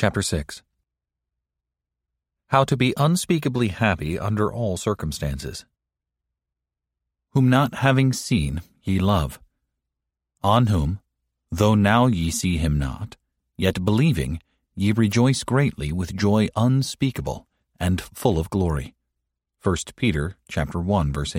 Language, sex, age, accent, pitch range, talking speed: English, male, 40-59, American, 75-115 Hz, 115 wpm